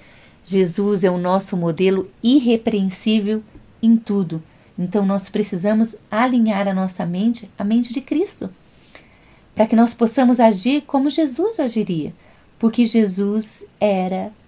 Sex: female